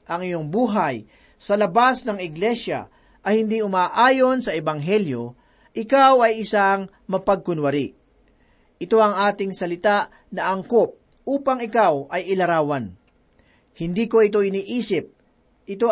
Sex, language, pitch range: male, Filipino, 175-230 Hz